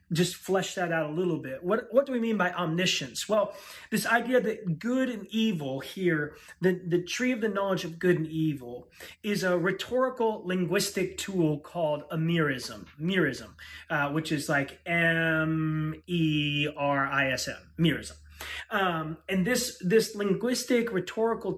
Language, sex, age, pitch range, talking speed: English, male, 30-49, 160-200 Hz, 145 wpm